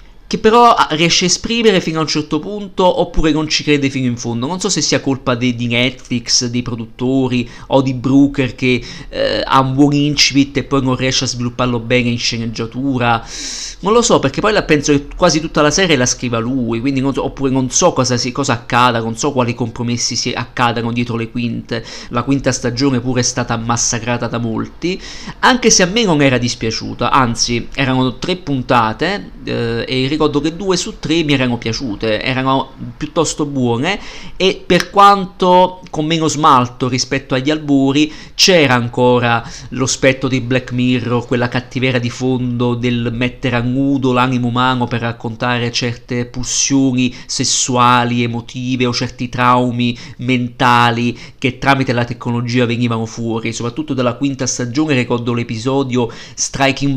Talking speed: 170 wpm